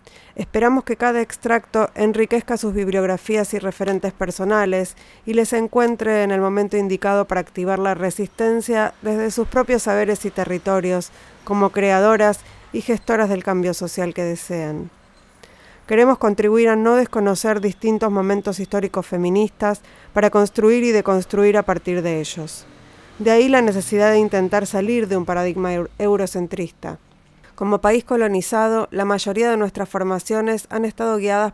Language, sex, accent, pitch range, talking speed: Spanish, female, Argentinian, 190-220 Hz, 145 wpm